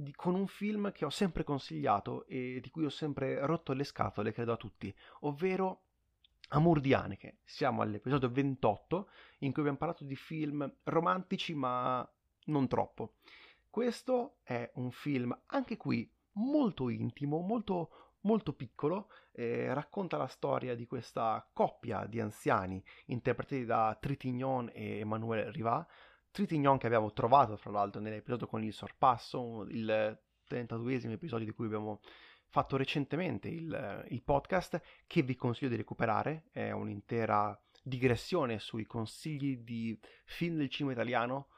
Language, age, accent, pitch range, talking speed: Italian, 30-49, native, 115-160 Hz, 140 wpm